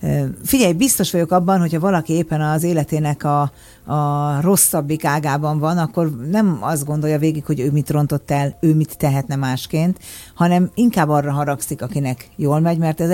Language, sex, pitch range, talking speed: Hungarian, female, 135-165 Hz, 170 wpm